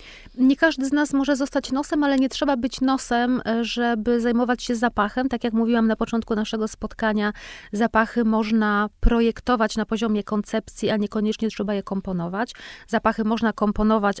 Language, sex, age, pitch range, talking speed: Polish, female, 30-49, 200-225 Hz, 155 wpm